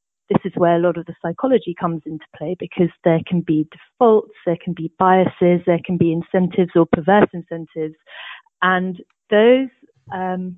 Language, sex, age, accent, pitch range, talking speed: English, female, 30-49, British, 165-195 Hz, 170 wpm